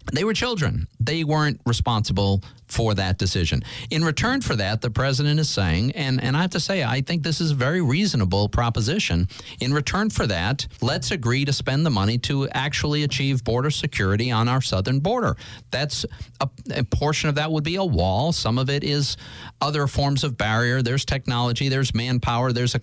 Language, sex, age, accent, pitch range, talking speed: English, male, 50-69, American, 95-135 Hz, 195 wpm